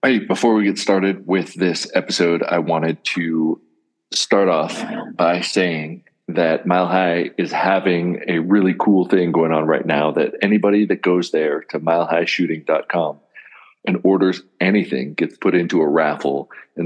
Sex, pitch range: male, 80-95 Hz